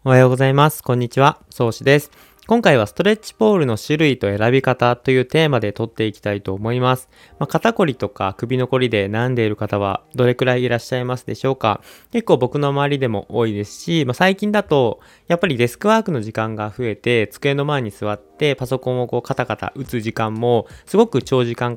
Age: 20-39